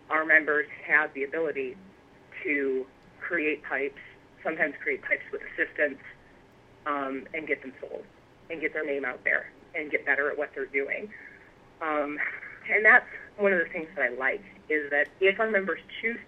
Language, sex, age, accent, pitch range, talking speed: English, female, 30-49, American, 135-165 Hz, 175 wpm